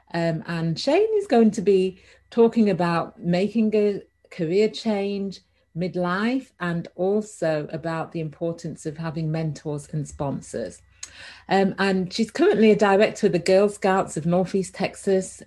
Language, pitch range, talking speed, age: English, 165-210 Hz, 145 wpm, 40-59